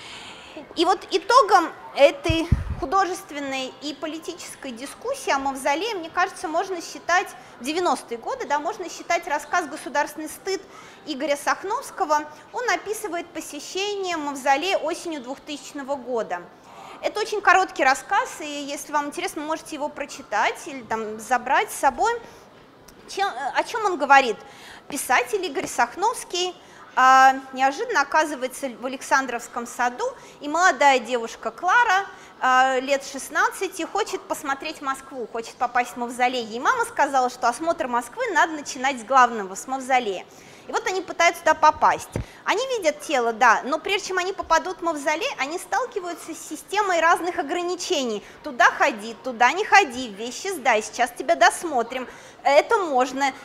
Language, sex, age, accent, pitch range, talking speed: Russian, female, 20-39, native, 270-370 Hz, 135 wpm